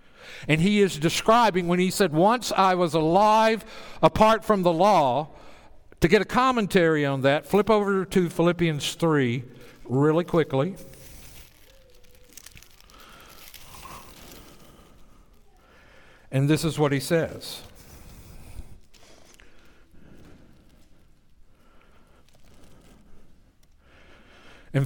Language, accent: English, American